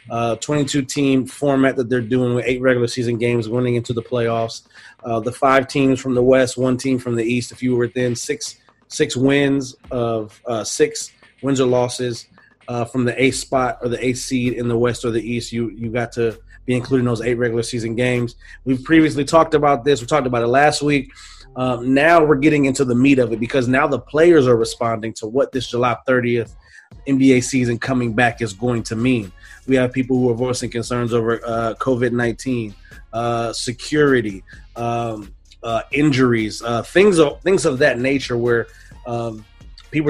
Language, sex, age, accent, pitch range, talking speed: English, male, 30-49, American, 115-135 Hz, 200 wpm